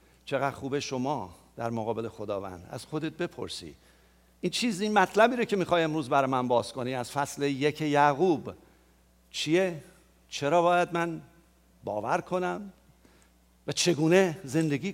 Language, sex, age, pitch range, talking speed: English, male, 50-69, 140-185 Hz, 135 wpm